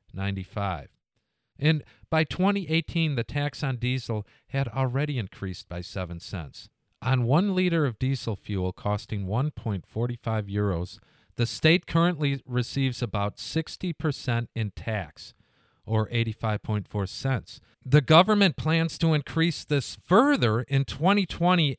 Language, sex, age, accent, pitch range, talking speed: English, male, 50-69, American, 110-150 Hz, 120 wpm